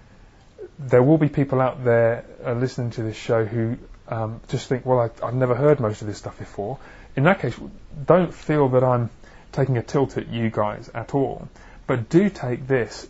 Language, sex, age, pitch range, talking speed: English, male, 30-49, 115-135 Hz, 195 wpm